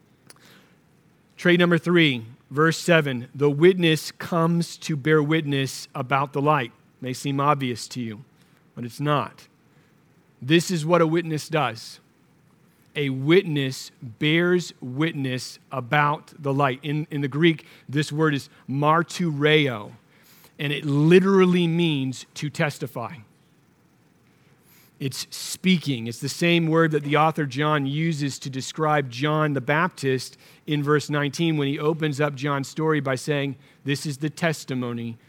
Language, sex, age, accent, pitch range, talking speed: English, male, 40-59, American, 135-160 Hz, 140 wpm